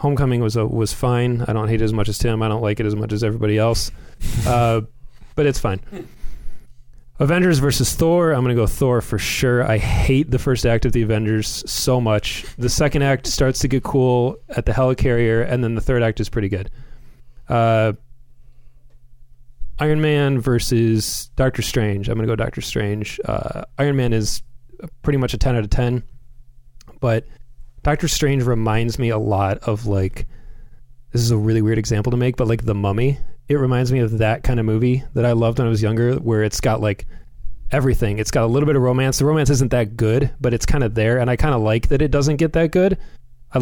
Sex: male